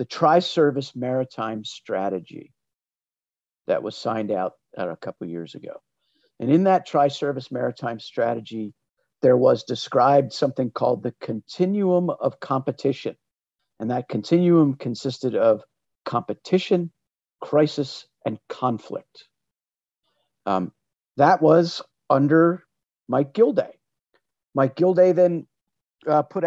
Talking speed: 105 wpm